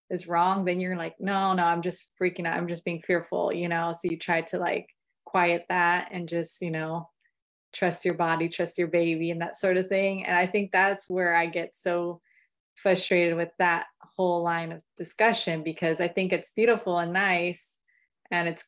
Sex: female